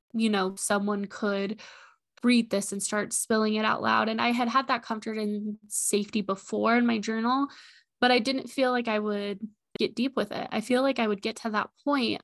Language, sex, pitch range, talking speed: English, female, 205-235 Hz, 215 wpm